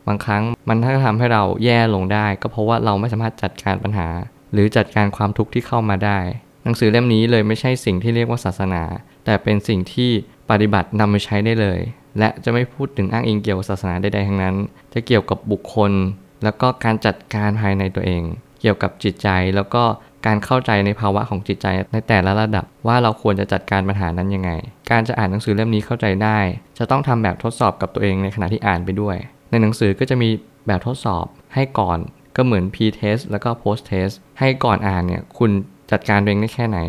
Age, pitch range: 20-39, 100-115 Hz